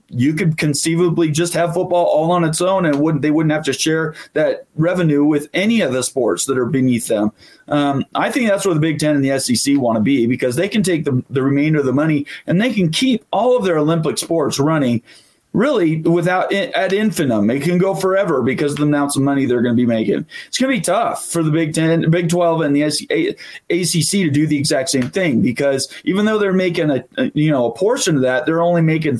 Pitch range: 145-175 Hz